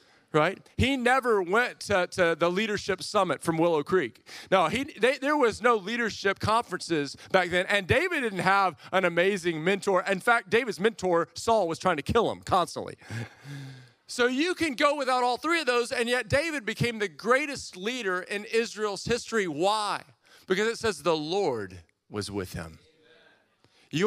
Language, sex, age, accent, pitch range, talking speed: English, male, 40-59, American, 140-195 Hz, 170 wpm